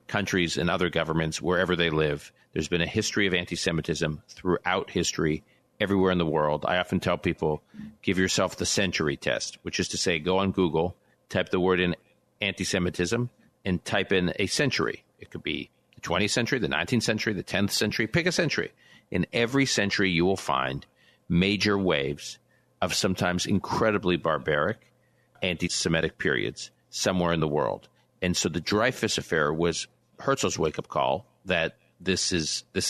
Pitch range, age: 85-100 Hz, 50-69